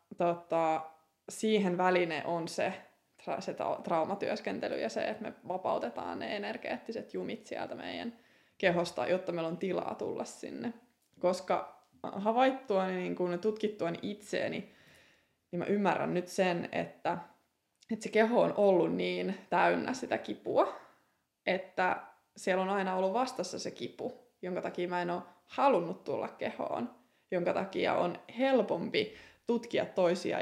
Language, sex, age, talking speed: English, female, 20-39, 130 wpm